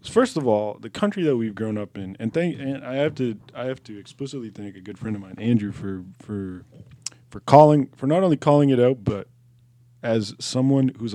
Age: 20-39